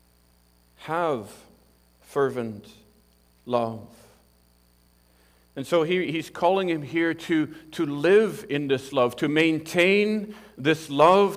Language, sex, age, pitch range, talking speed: English, male, 50-69, 125-180 Hz, 100 wpm